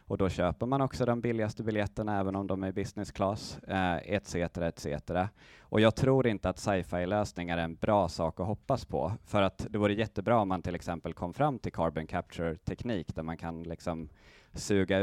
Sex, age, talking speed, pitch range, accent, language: male, 20-39, 195 wpm, 85-105 Hz, native, Swedish